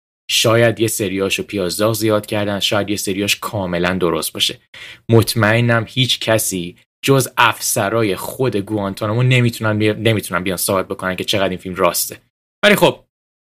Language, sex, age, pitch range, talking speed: Persian, male, 10-29, 95-120 Hz, 140 wpm